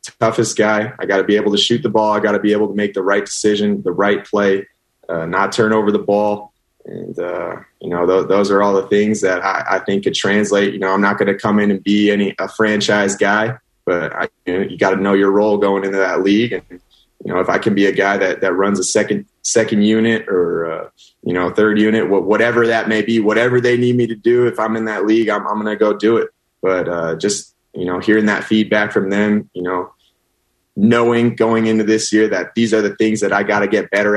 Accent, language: American, English